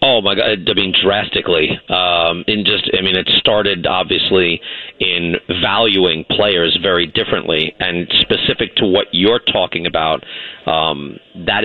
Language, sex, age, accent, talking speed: English, male, 40-59, American, 145 wpm